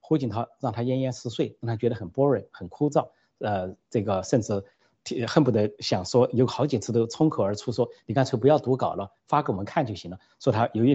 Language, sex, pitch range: Chinese, male, 110-145 Hz